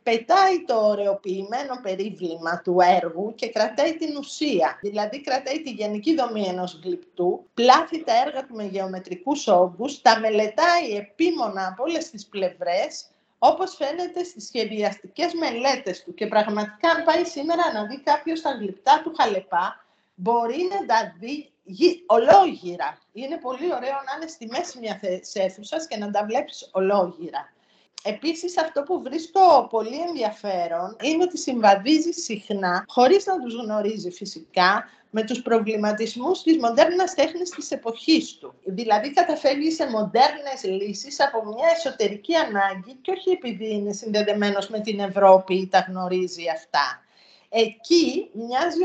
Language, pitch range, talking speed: Greek, 200-315 Hz, 140 wpm